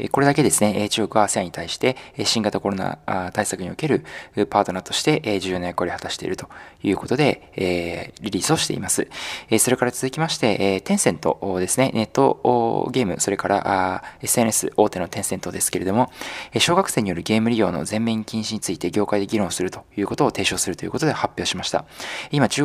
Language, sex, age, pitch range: Japanese, male, 20-39, 95-130 Hz